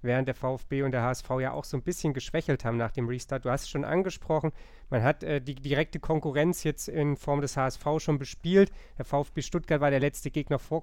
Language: German